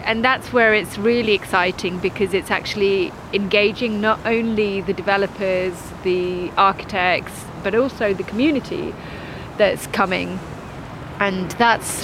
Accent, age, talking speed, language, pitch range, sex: British, 30-49, 120 wpm, English, 185-220 Hz, female